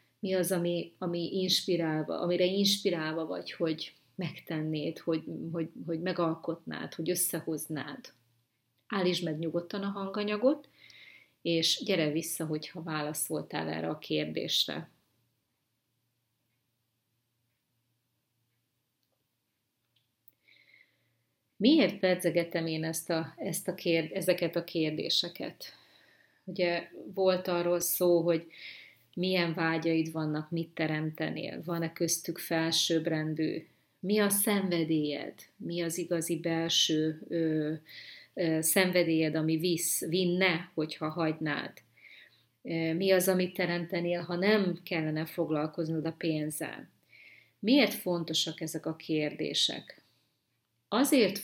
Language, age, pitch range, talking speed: Hungarian, 30-49, 155-180 Hz, 100 wpm